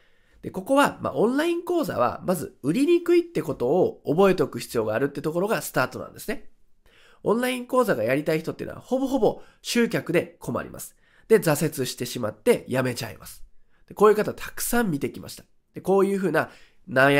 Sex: male